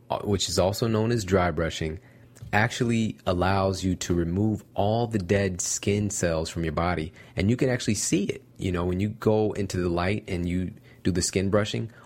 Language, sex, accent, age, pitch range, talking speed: English, male, American, 30-49, 90-115 Hz, 200 wpm